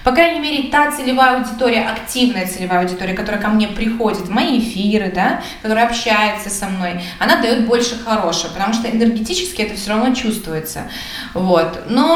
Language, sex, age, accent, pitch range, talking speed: Russian, female, 20-39, native, 215-260 Hz, 170 wpm